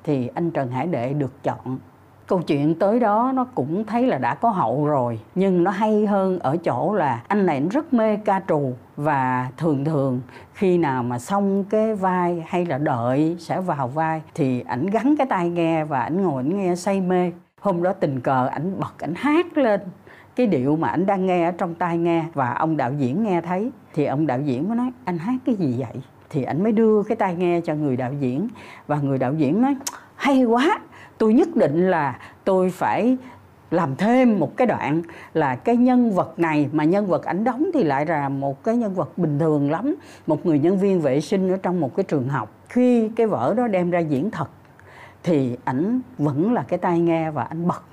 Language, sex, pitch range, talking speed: Vietnamese, female, 150-215 Hz, 220 wpm